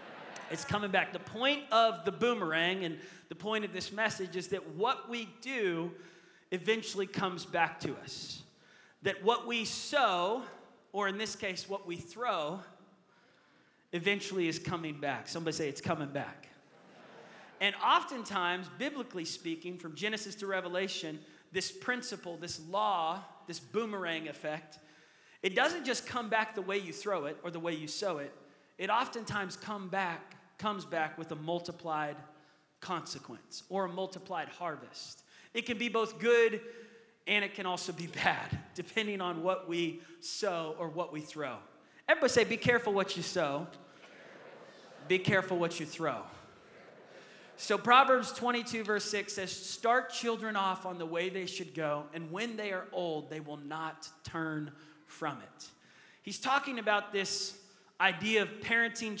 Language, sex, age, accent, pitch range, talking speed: English, male, 30-49, American, 170-220 Hz, 155 wpm